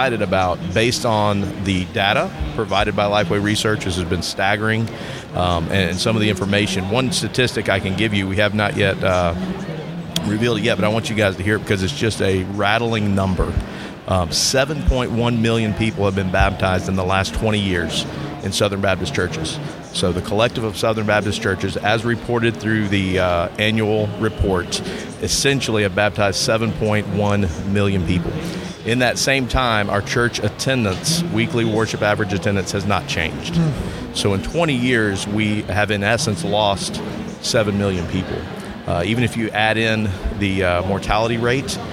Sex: male